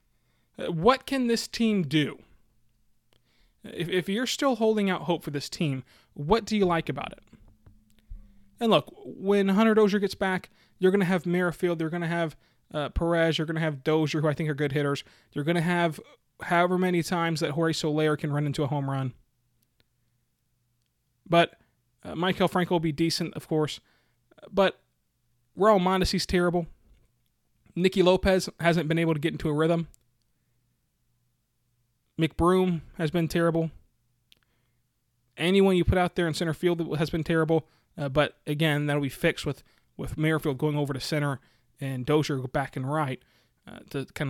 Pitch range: 130-170 Hz